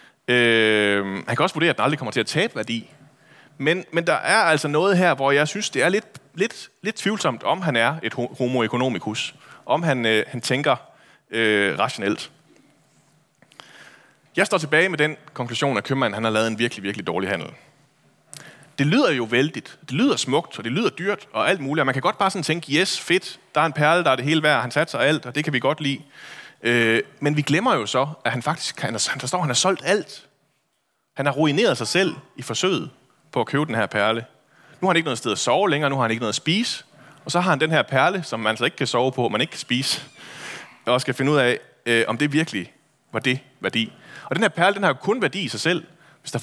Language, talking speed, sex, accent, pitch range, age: Danish, 235 wpm, male, native, 120-155 Hz, 30-49